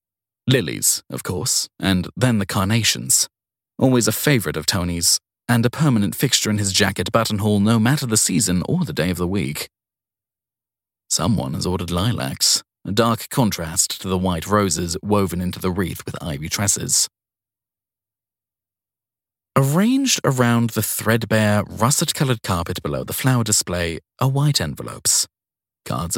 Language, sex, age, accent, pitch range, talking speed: English, male, 40-59, British, 90-120 Hz, 140 wpm